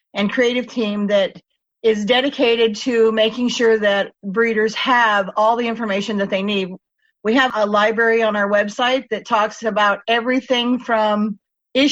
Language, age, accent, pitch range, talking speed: English, 50-69, American, 215-255 Hz, 155 wpm